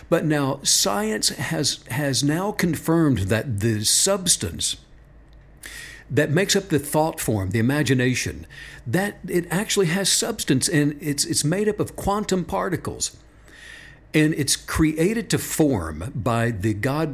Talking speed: 135 wpm